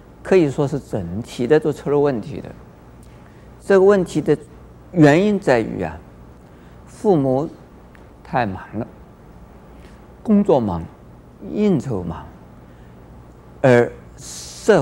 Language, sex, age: Chinese, male, 50-69